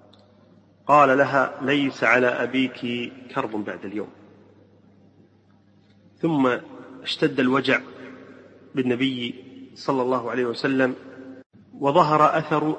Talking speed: 85 wpm